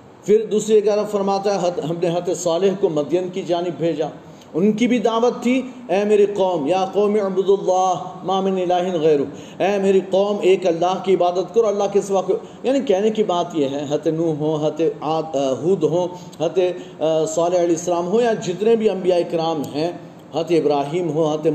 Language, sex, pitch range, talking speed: Urdu, male, 165-205 Hz, 185 wpm